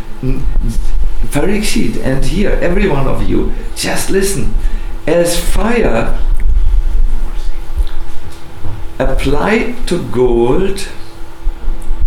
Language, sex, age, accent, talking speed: English, male, 60-79, German, 70 wpm